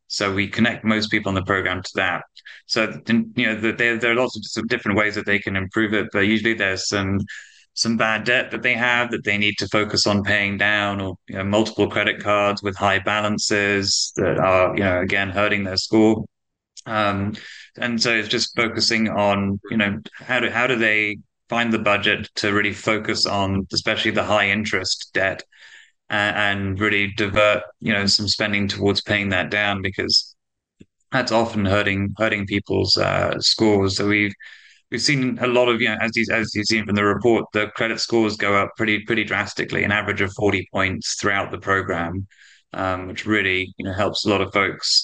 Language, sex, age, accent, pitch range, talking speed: English, male, 20-39, British, 100-110 Hz, 200 wpm